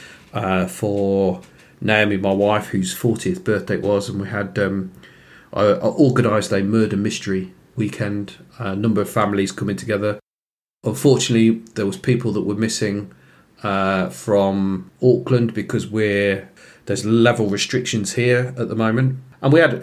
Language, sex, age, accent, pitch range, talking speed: English, male, 40-59, British, 105-125 Hz, 150 wpm